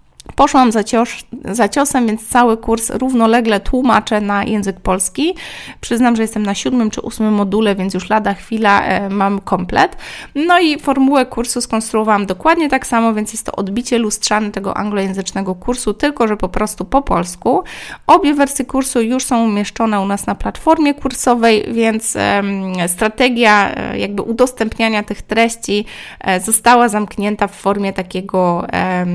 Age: 20-39